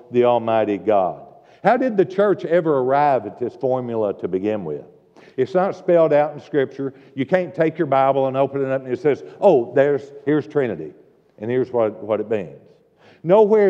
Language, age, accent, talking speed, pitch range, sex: English, 60-79, American, 195 wpm, 130-180 Hz, male